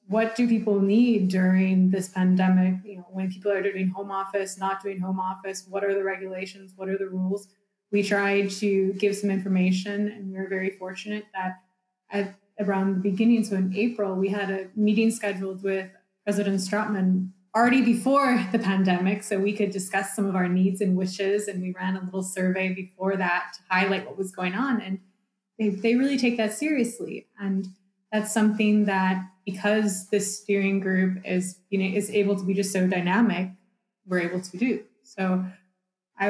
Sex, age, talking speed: female, 20-39, 185 wpm